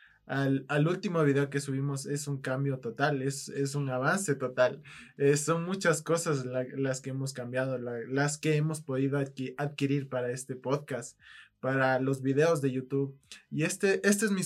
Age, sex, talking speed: 20-39, male, 185 wpm